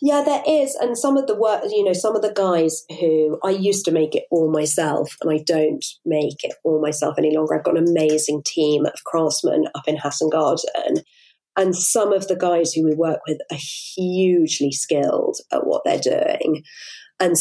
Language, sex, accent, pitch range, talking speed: English, female, British, 155-170 Hz, 205 wpm